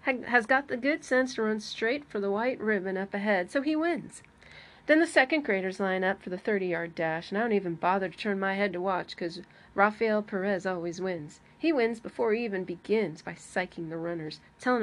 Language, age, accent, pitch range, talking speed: English, 40-59, American, 190-235 Hz, 220 wpm